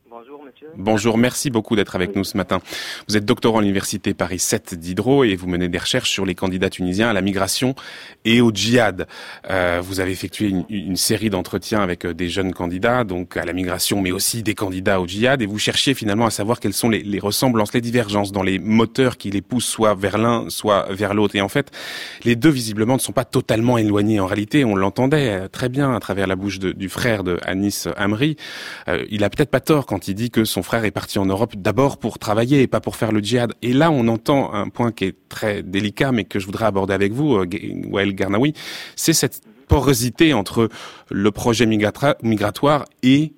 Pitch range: 100-120 Hz